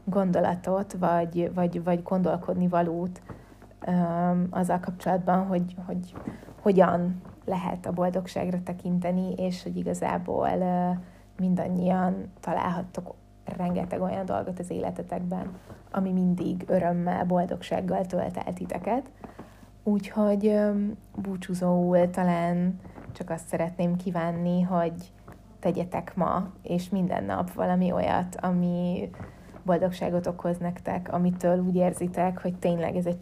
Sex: female